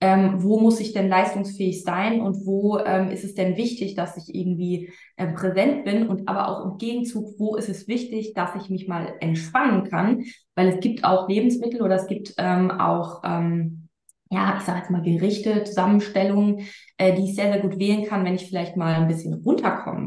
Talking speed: 205 wpm